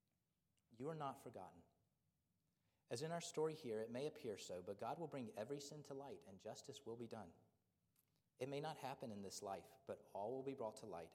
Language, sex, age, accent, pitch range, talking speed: English, male, 30-49, American, 95-135 Hz, 215 wpm